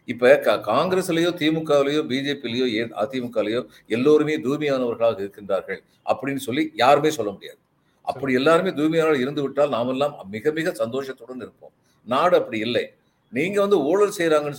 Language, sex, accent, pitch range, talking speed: Tamil, male, native, 135-185 Hz, 120 wpm